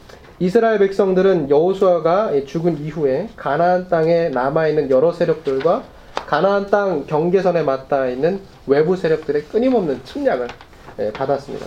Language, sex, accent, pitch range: Korean, male, native, 150-210 Hz